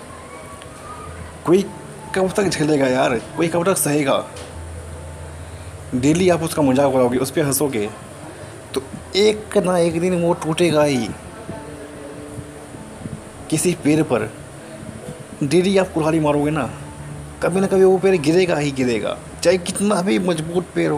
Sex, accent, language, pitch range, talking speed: male, native, Hindi, 110-170 Hz, 130 wpm